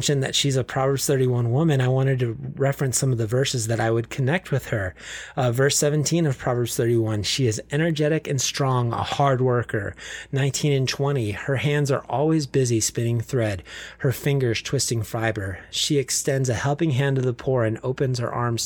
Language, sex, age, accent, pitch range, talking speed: English, male, 30-49, American, 120-145 Hz, 195 wpm